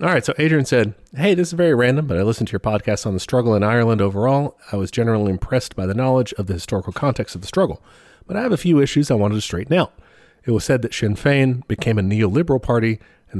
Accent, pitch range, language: American, 100-130 Hz, English